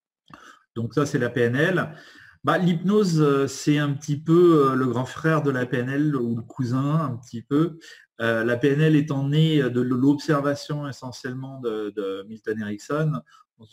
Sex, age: male, 30-49